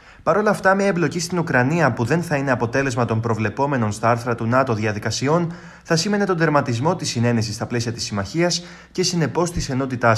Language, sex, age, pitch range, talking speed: Greek, male, 20-39, 115-160 Hz, 195 wpm